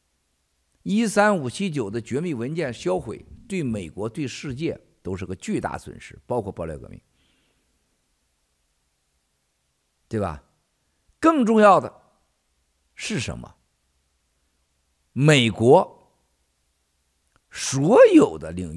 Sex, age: male, 50-69